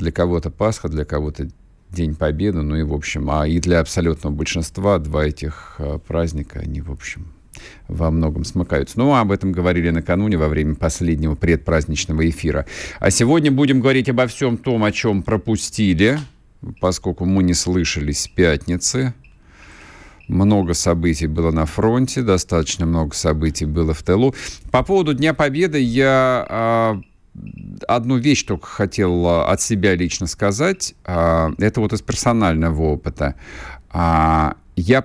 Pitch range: 80-105 Hz